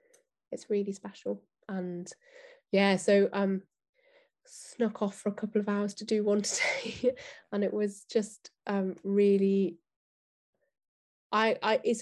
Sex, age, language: female, 20-39, English